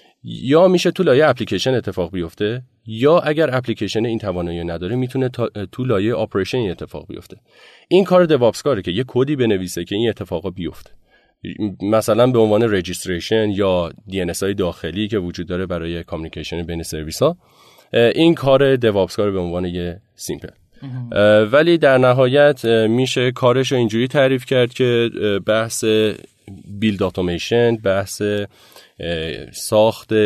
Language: Persian